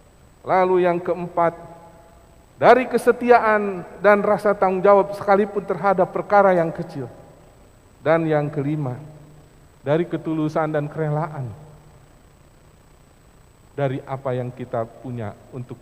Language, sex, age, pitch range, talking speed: Indonesian, male, 50-69, 115-170 Hz, 100 wpm